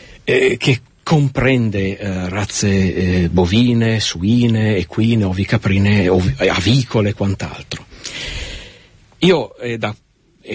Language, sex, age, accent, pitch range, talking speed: Italian, male, 50-69, native, 100-125 Hz, 85 wpm